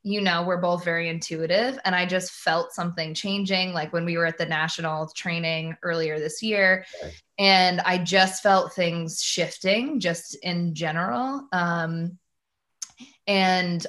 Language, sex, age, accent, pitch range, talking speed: English, female, 20-39, American, 170-190 Hz, 145 wpm